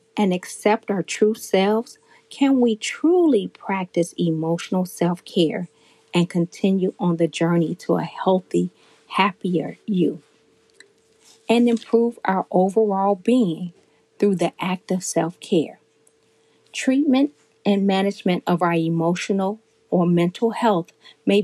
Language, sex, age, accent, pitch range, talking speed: English, female, 40-59, American, 180-230 Hz, 115 wpm